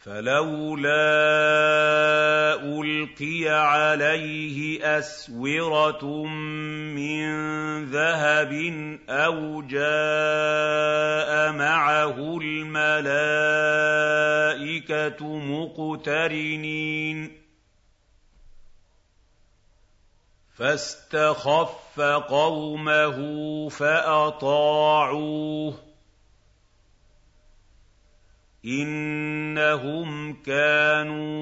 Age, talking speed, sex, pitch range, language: 50-69, 30 wpm, male, 145-155 Hz, Arabic